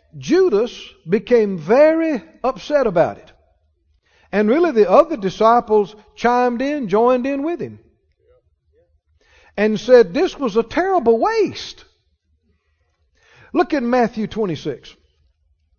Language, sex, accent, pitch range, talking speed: English, male, American, 180-255 Hz, 105 wpm